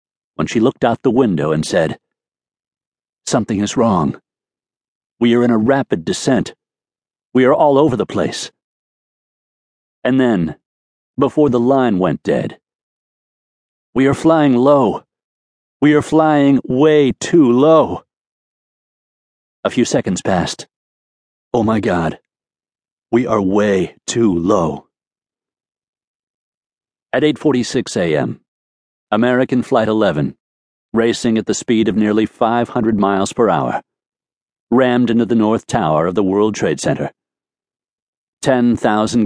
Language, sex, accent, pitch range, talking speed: English, male, American, 105-130 Hz, 120 wpm